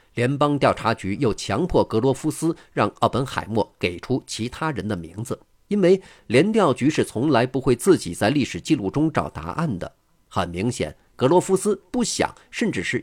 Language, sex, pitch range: Chinese, male, 100-140 Hz